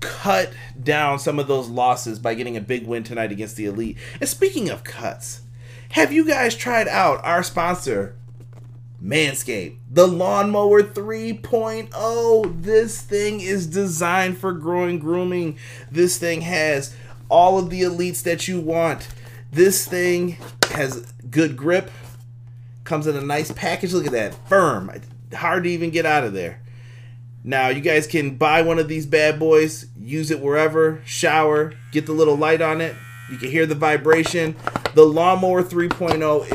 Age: 30-49